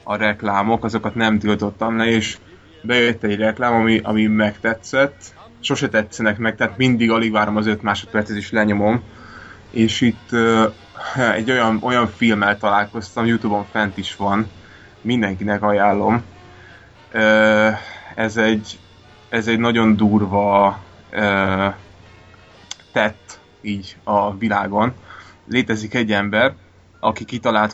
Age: 20-39